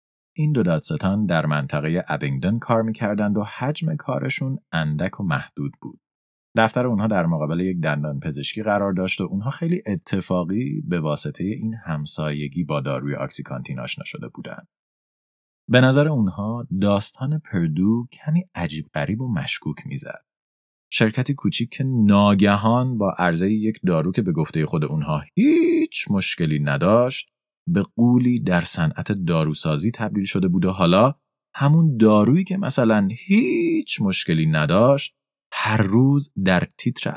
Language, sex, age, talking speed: Persian, male, 30-49, 135 wpm